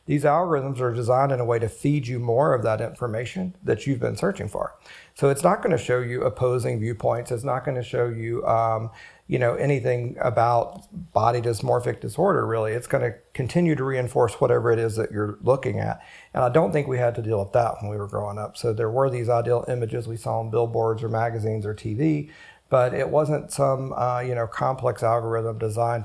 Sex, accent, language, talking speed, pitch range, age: male, American, English, 210 wpm, 110-130 Hz, 40-59